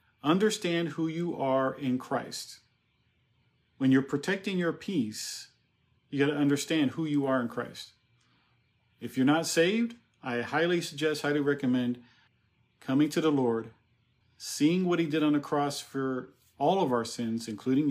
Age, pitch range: 40-59, 120-150 Hz